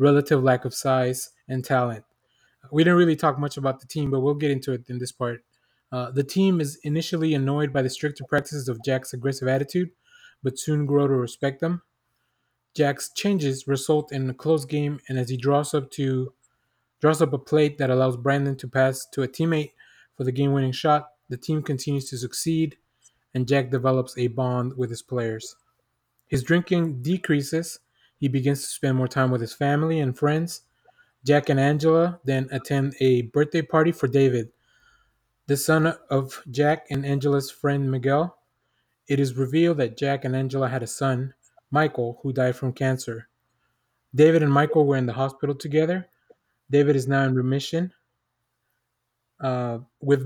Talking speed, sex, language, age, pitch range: 175 wpm, male, English, 20-39, 130-150 Hz